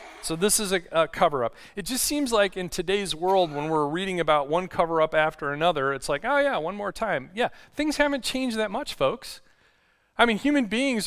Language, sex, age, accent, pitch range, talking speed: English, male, 40-59, American, 160-235 Hz, 210 wpm